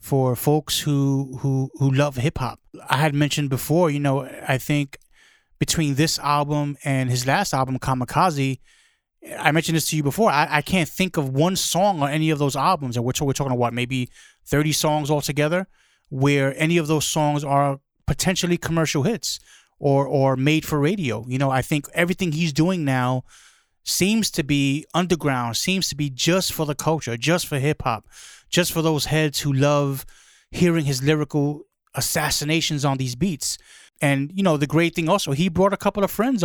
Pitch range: 135-165 Hz